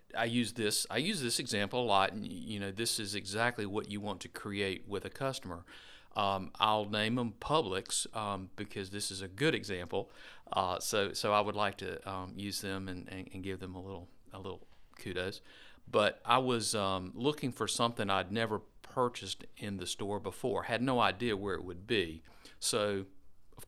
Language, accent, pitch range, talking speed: English, American, 95-115 Hz, 200 wpm